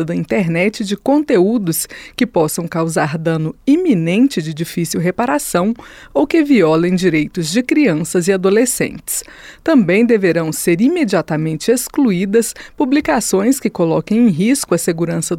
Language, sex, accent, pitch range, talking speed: Portuguese, female, Brazilian, 170-255 Hz, 125 wpm